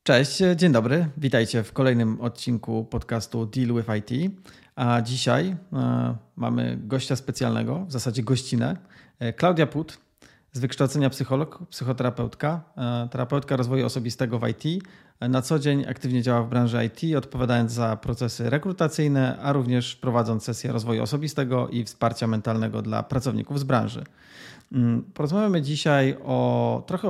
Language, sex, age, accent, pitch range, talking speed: Polish, male, 30-49, native, 115-135 Hz, 130 wpm